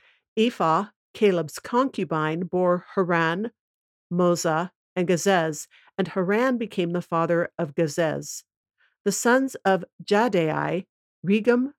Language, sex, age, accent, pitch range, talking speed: English, female, 50-69, American, 165-205 Hz, 100 wpm